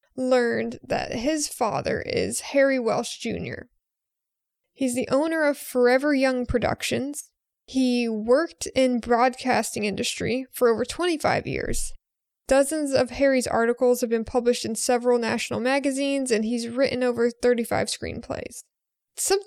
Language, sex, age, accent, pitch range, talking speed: English, female, 20-39, American, 240-275 Hz, 130 wpm